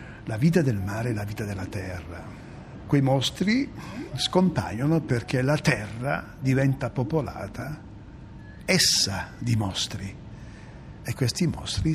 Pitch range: 115-165 Hz